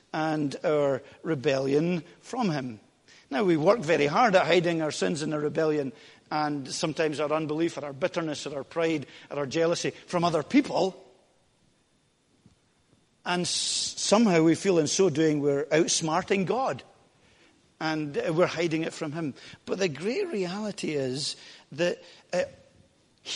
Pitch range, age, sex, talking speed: 145-180 Hz, 50-69, male, 145 wpm